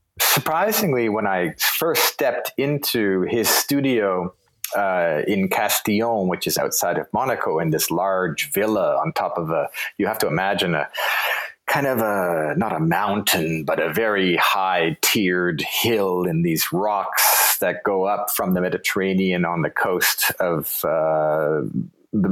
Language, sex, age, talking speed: English, male, 30-49, 150 wpm